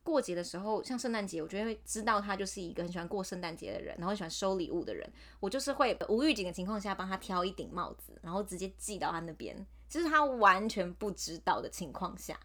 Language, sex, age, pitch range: Chinese, female, 20-39, 175-255 Hz